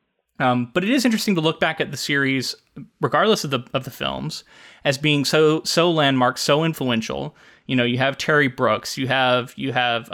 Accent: American